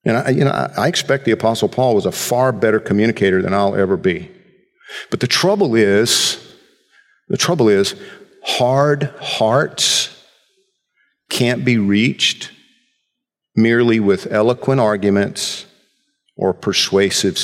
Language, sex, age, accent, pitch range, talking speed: English, male, 50-69, American, 120-200 Hz, 115 wpm